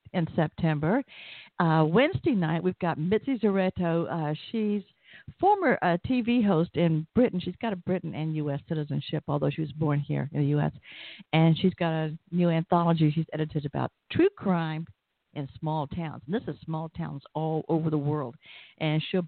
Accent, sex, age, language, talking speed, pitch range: American, female, 60-79, English, 180 wpm, 155-195 Hz